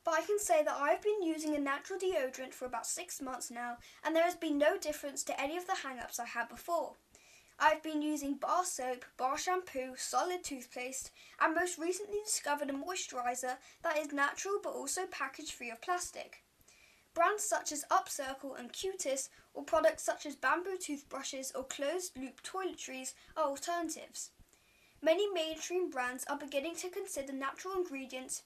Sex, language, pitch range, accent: female, English, 270-345 Hz, British